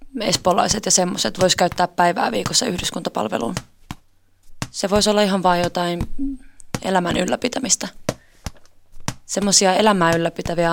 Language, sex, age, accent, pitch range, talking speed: Finnish, female, 20-39, native, 170-210 Hz, 105 wpm